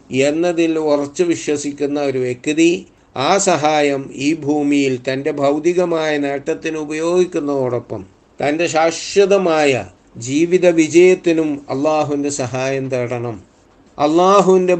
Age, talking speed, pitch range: 60-79, 80 wpm, 140-170 Hz